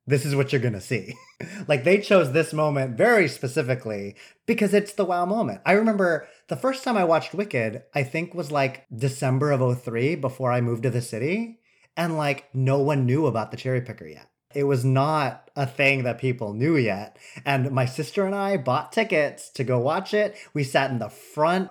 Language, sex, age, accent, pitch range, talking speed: English, male, 30-49, American, 130-175 Hz, 205 wpm